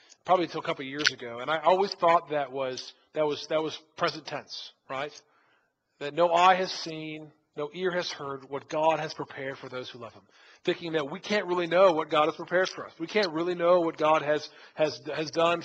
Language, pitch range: English, 155-190 Hz